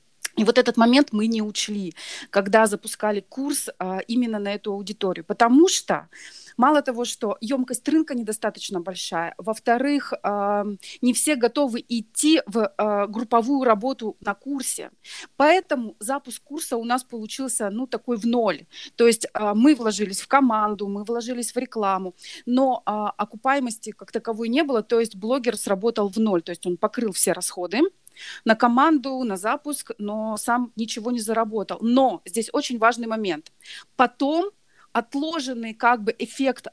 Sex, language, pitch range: female, Russian, 210-260 Hz